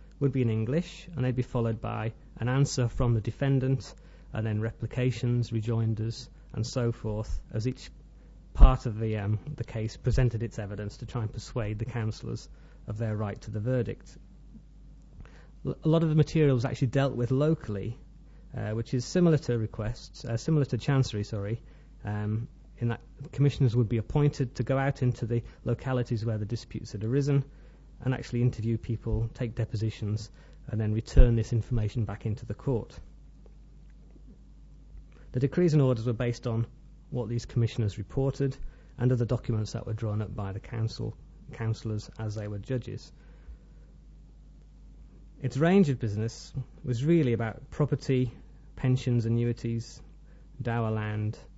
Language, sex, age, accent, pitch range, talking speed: English, male, 30-49, British, 110-135 Hz, 160 wpm